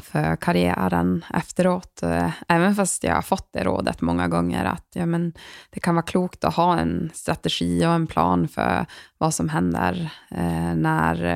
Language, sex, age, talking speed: English, female, 20-39, 160 wpm